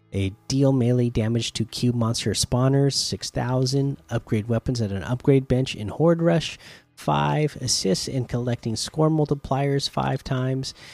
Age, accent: 30-49, American